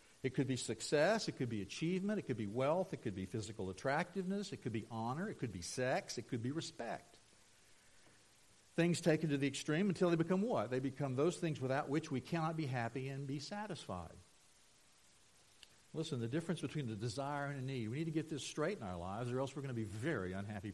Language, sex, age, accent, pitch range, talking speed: English, male, 60-79, American, 130-195 Hz, 225 wpm